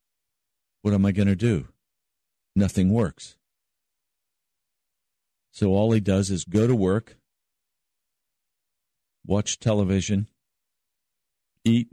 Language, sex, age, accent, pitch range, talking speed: English, male, 50-69, American, 105-140 Hz, 95 wpm